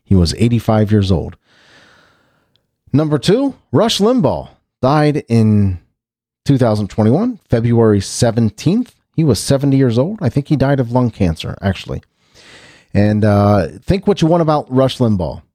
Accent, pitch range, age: American, 100-145 Hz, 40-59